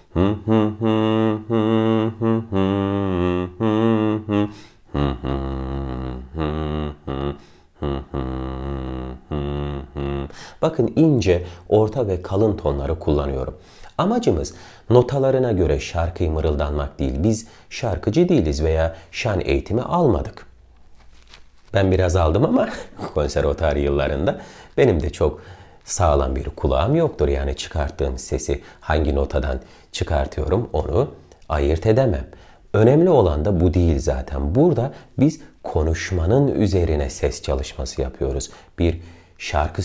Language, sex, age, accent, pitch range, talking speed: Turkish, male, 40-59, native, 70-100 Hz, 85 wpm